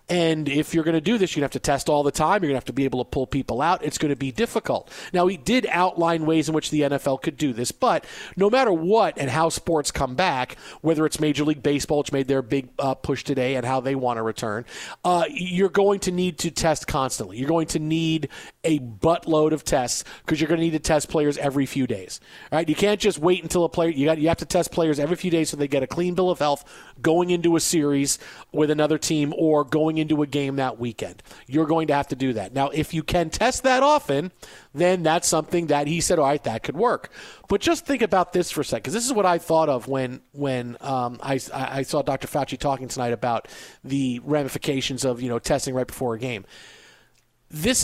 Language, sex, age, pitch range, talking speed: English, male, 40-59, 135-170 Hz, 250 wpm